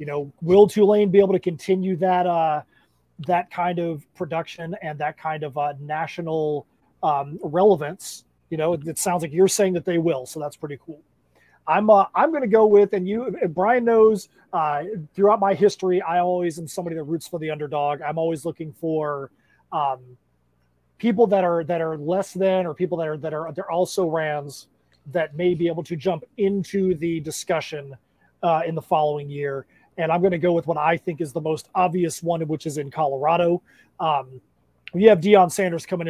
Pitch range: 155-185 Hz